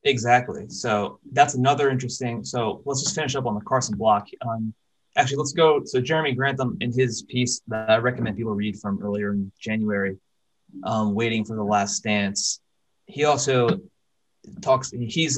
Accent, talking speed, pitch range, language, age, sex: American, 170 wpm, 105-130 Hz, English, 20-39, male